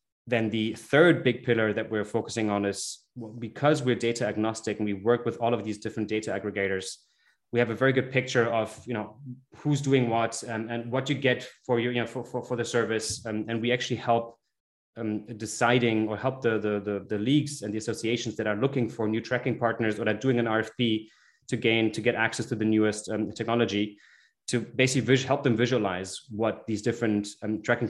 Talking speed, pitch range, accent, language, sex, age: 215 wpm, 110-120 Hz, German, English, male, 20-39